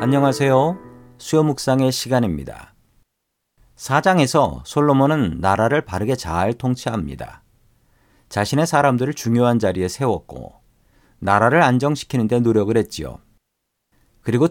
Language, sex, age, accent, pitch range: Korean, male, 40-59, native, 105-140 Hz